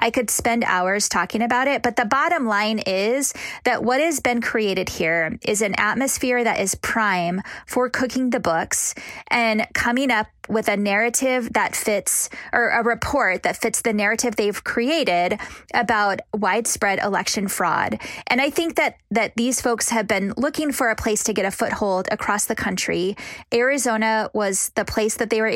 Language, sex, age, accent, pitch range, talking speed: English, female, 20-39, American, 200-245 Hz, 180 wpm